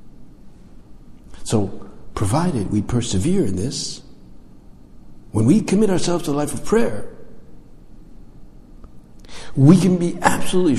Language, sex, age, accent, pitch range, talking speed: English, male, 60-79, American, 90-145 Hz, 105 wpm